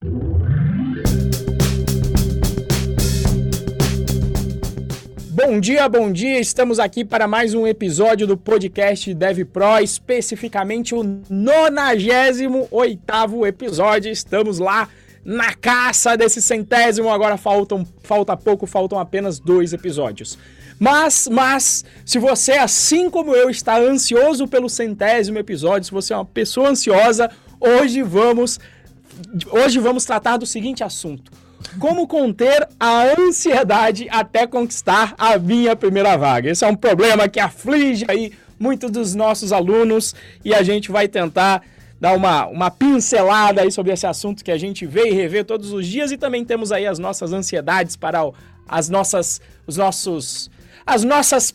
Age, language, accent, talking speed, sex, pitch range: 20-39, Portuguese, Brazilian, 135 wpm, male, 180-240 Hz